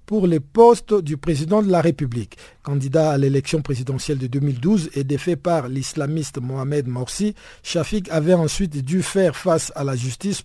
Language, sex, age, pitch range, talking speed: French, male, 50-69, 140-180 Hz, 165 wpm